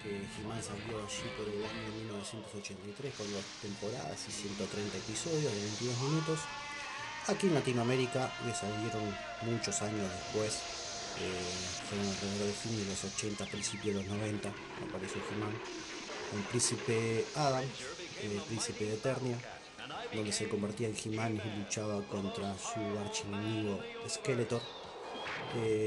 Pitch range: 105-130 Hz